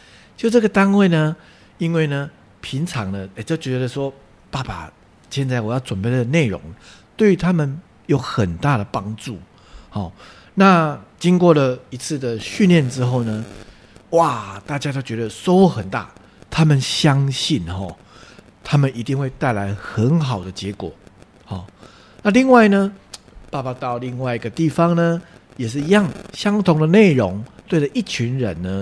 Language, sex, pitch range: English, male, 110-165 Hz